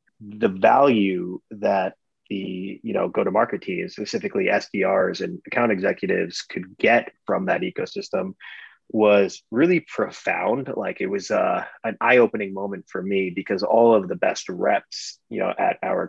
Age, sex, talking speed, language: 30-49, male, 150 wpm, English